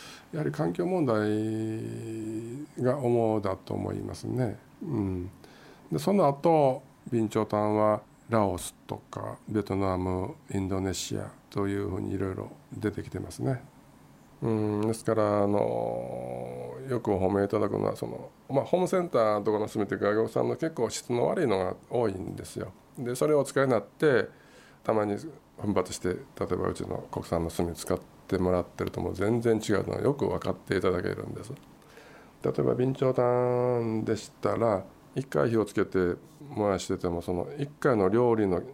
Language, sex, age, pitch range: Japanese, male, 50-69, 95-120 Hz